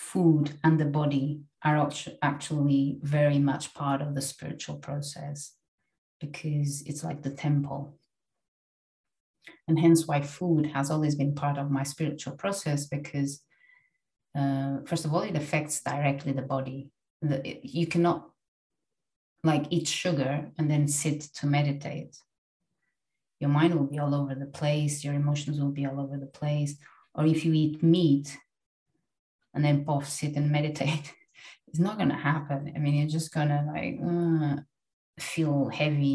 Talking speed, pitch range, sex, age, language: 150 wpm, 140-155 Hz, female, 30-49, English